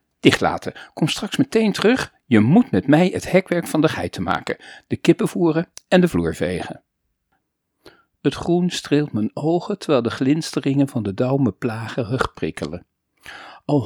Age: 50-69